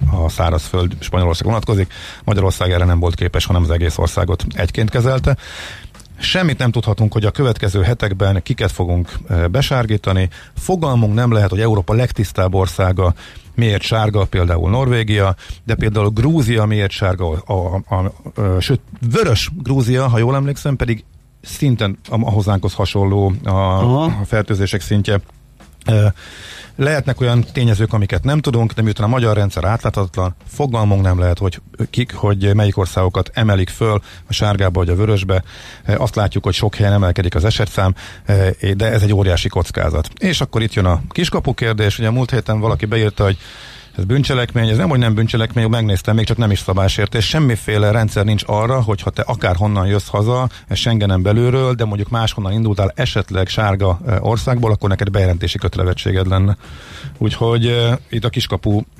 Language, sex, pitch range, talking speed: Hungarian, male, 95-115 Hz, 160 wpm